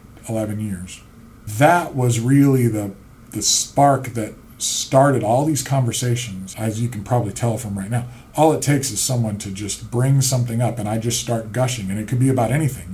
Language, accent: English, American